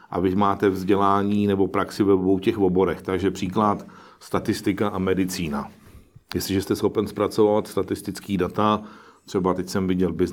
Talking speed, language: 145 wpm, Czech